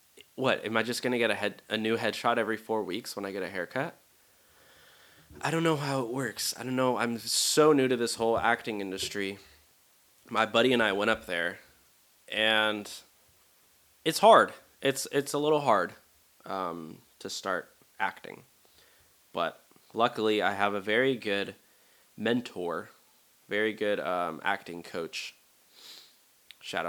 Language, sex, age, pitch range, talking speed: English, male, 20-39, 95-115 Hz, 155 wpm